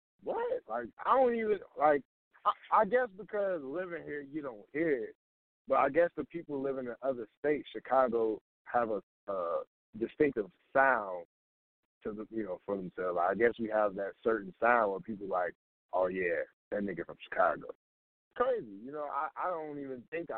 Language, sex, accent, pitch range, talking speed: English, male, American, 110-170 Hz, 185 wpm